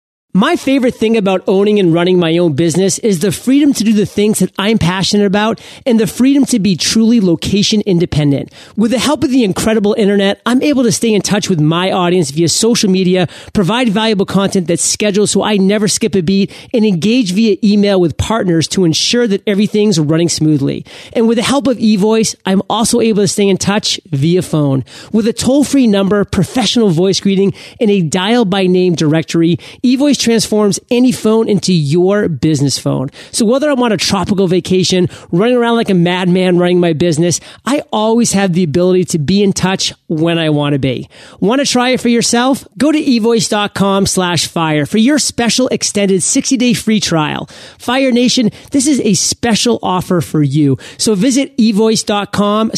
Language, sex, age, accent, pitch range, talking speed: English, male, 30-49, American, 175-225 Hz, 190 wpm